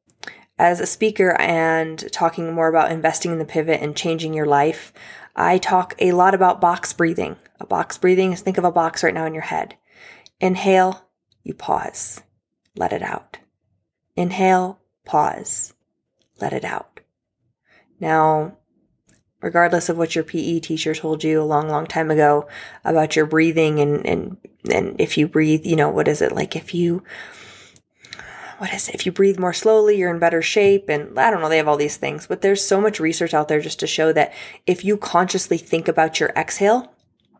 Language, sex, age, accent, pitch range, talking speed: English, female, 20-39, American, 160-200 Hz, 185 wpm